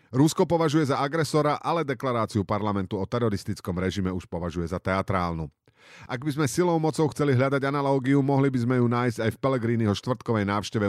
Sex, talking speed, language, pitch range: male, 175 wpm, Slovak, 105-135 Hz